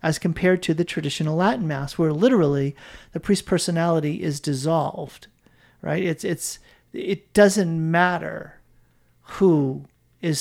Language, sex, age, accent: English, male, 40-59, American